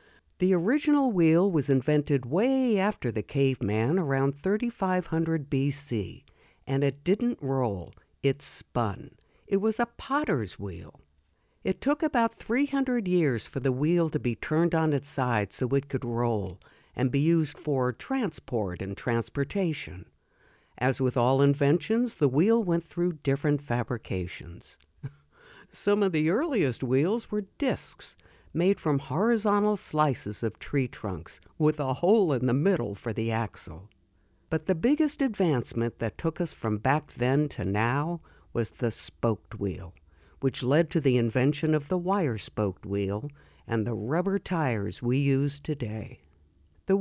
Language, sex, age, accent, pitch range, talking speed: English, female, 60-79, American, 115-180 Hz, 145 wpm